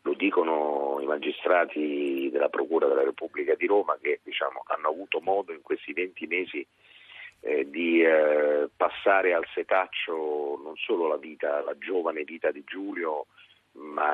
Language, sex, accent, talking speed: Italian, male, native, 150 wpm